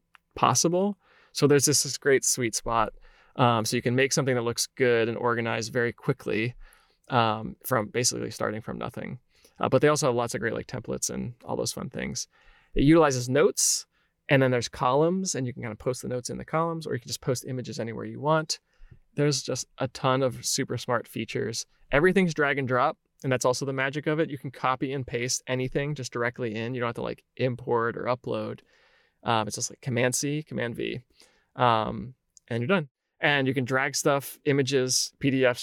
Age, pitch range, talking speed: 20-39, 120-145 Hz, 210 wpm